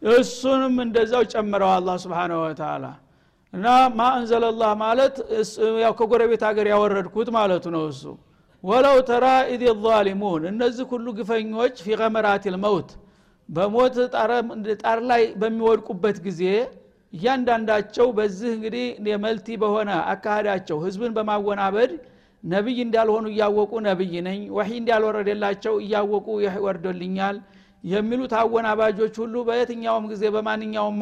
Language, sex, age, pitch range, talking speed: Amharic, male, 60-79, 205-235 Hz, 115 wpm